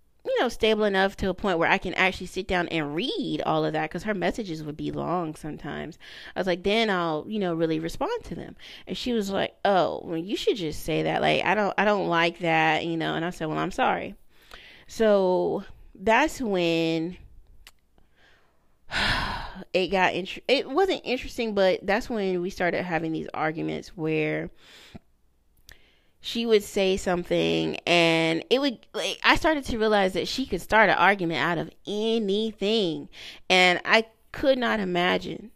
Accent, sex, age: American, female, 30-49